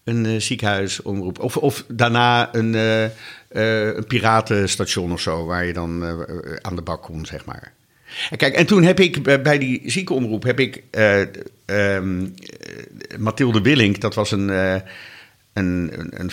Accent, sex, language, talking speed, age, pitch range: Dutch, male, Dutch, 155 wpm, 50-69, 100-130 Hz